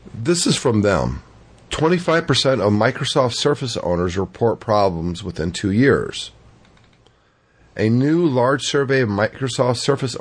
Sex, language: male, English